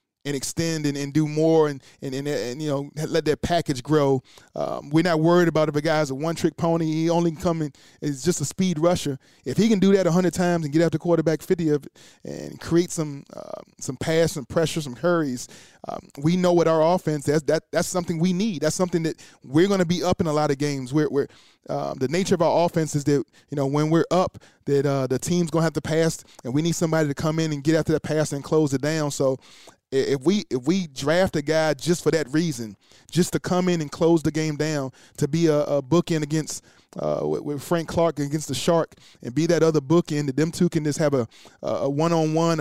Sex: male